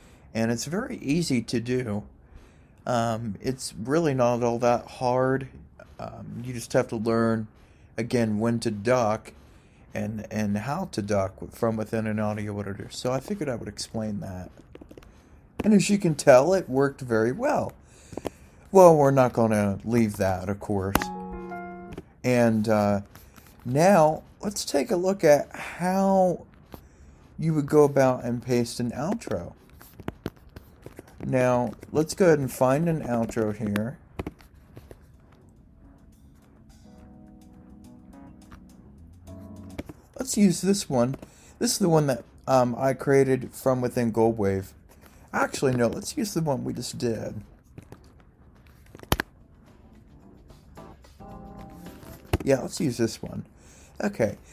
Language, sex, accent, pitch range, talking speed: English, male, American, 105-140 Hz, 125 wpm